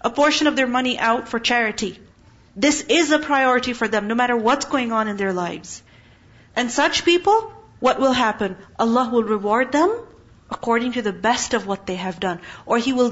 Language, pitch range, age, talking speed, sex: English, 215-300 Hz, 40-59, 200 wpm, female